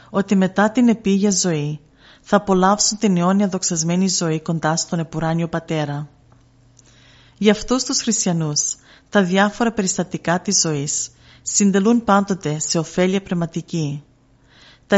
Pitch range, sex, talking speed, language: 150-200 Hz, female, 120 wpm, Greek